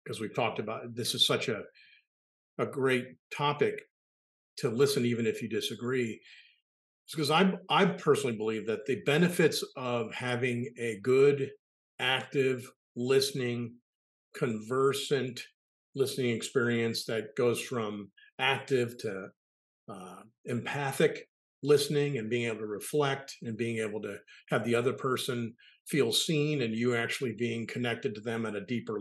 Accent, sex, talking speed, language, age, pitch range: American, male, 145 wpm, English, 50-69, 115-145 Hz